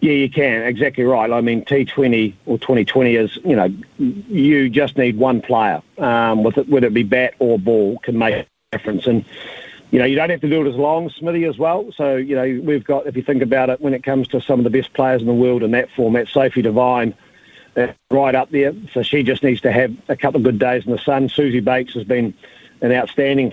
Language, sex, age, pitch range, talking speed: English, male, 40-59, 125-140 Hz, 240 wpm